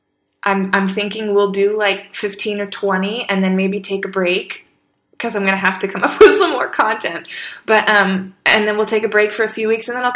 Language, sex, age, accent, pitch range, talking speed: English, female, 20-39, American, 185-215 Hz, 250 wpm